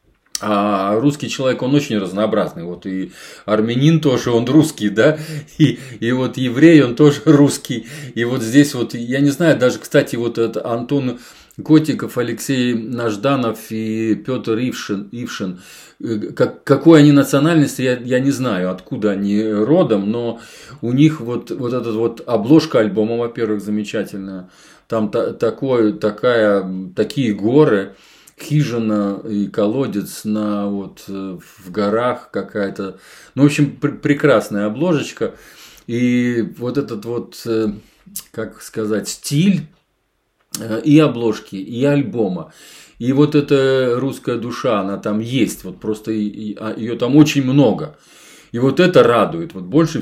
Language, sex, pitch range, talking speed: Russian, male, 105-140 Hz, 130 wpm